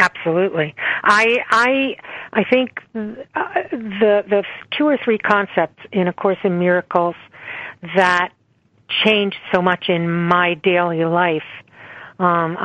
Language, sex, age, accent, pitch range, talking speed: English, female, 50-69, American, 170-200 Hz, 120 wpm